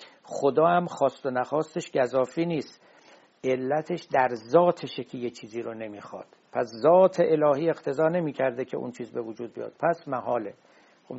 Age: 60-79